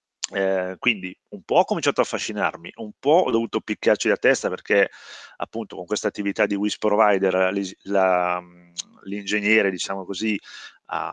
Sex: male